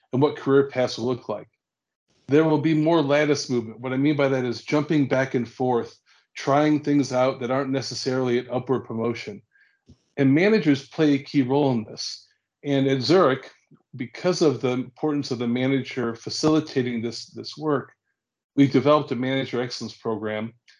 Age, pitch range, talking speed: 40-59, 120-145 Hz, 175 wpm